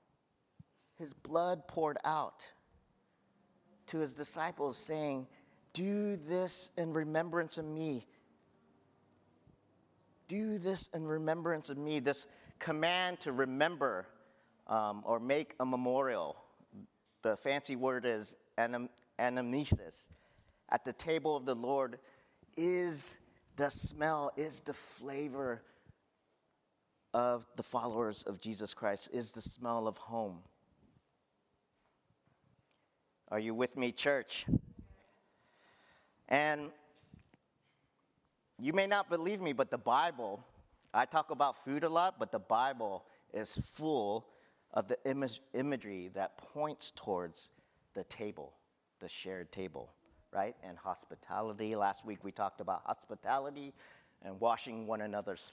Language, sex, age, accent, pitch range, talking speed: English, male, 40-59, American, 110-155 Hz, 115 wpm